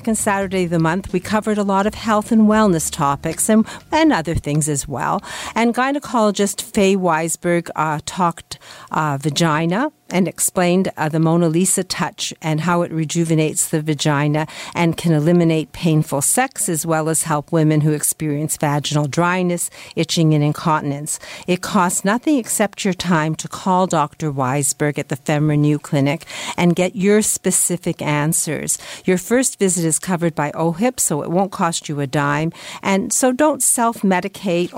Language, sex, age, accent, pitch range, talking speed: English, female, 50-69, American, 155-195 Hz, 165 wpm